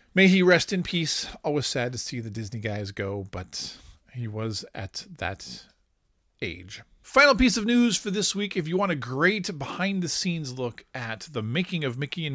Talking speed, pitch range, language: 190 wpm, 110-170 Hz, English